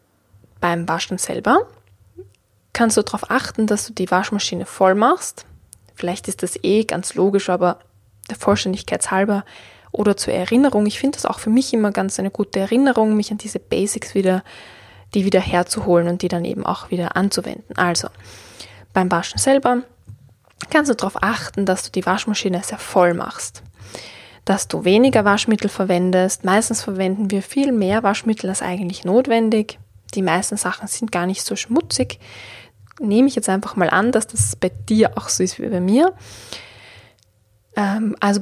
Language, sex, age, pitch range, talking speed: German, female, 10-29, 130-215 Hz, 165 wpm